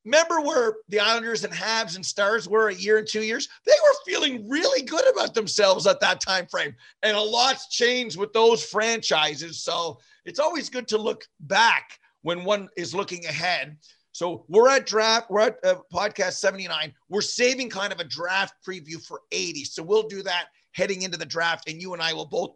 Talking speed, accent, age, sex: 200 wpm, American, 40-59, male